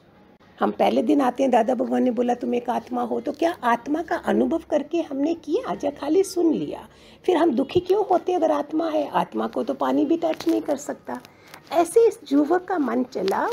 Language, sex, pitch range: Hindi, female, 270-360 Hz